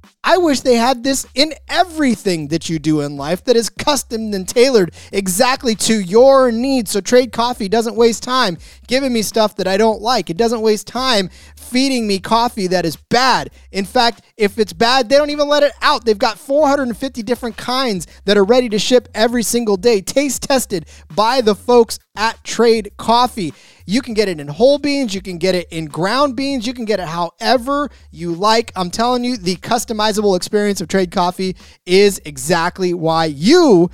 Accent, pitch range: American, 190-255 Hz